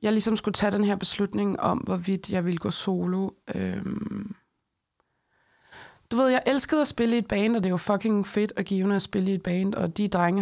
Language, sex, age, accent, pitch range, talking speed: Danish, female, 20-39, native, 180-205 Hz, 225 wpm